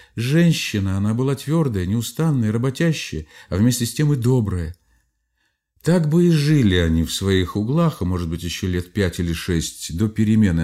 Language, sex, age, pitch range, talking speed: Russian, male, 50-69, 90-150 Hz, 170 wpm